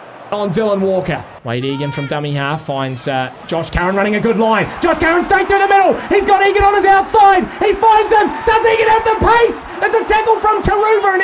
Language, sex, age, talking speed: English, male, 30-49, 225 wpm